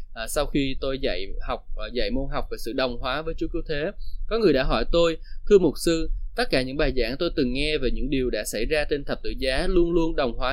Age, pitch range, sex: 20-39, 120-160 Hz, male